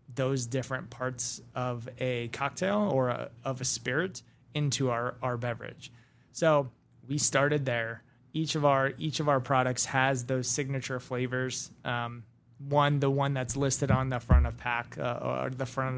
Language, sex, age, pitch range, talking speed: English, male, 20-39, 125-150 Hz, 170 wpm